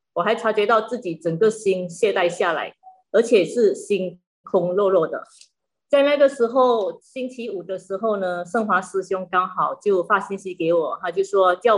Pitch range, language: 180-245 Hz, Chinese